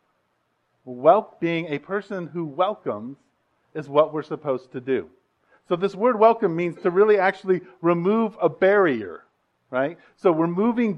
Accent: American